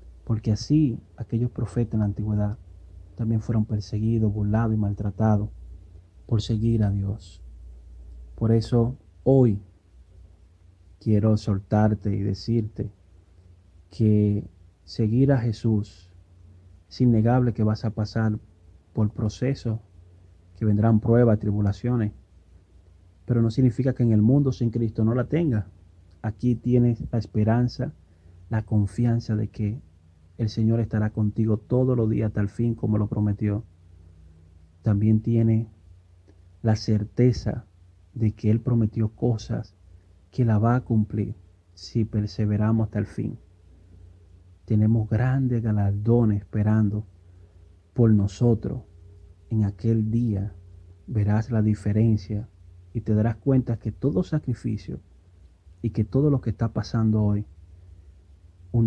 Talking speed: 120 wpm